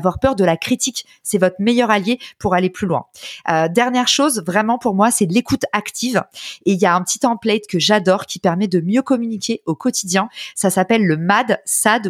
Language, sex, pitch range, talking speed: French, female, 185-240 Hz, 220 wpm